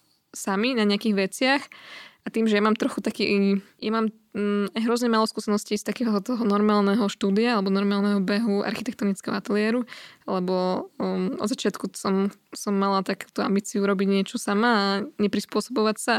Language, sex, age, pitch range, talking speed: Slovak, female, 20-39, 200-225 Hz, 150 wpm